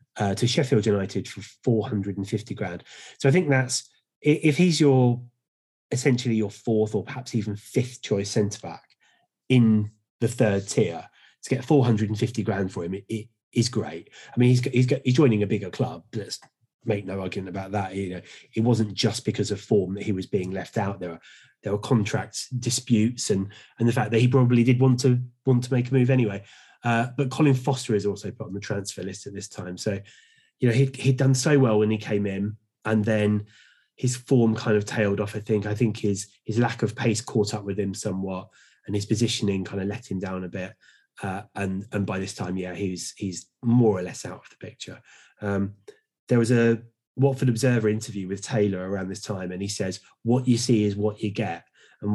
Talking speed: 215 wpm